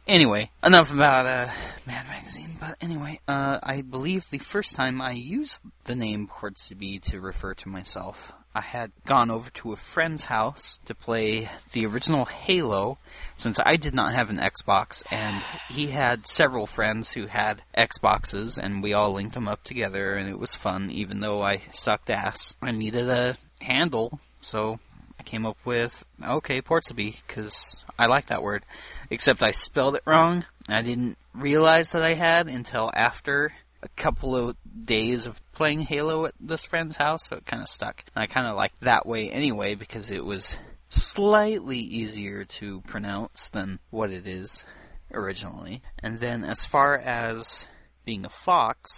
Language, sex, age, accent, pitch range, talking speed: English, male, 30-49, American, 105-145 Hz, 170 wpm